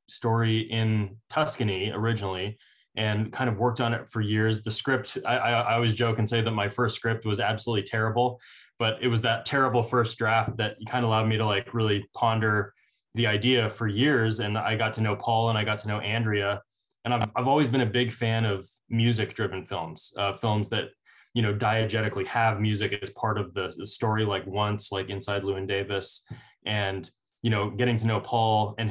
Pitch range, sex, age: 100-115 Hz, male, 20-39